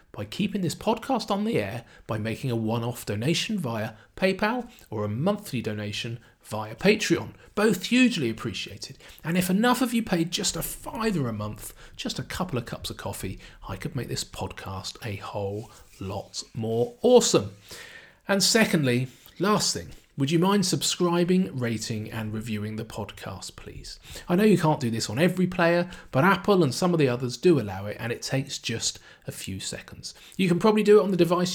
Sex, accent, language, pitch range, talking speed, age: male, British, English, 110-180 Hz, 190 wpm, 40-59